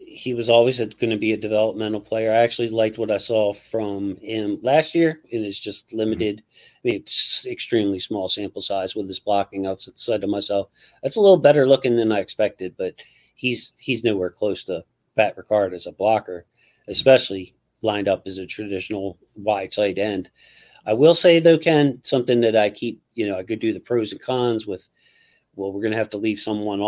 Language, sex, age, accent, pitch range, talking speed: English, male, 40-59, American, 100-115 Hz, 200 wpm